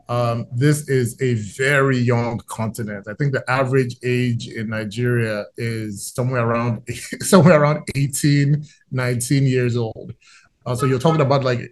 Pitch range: 120-140 Hz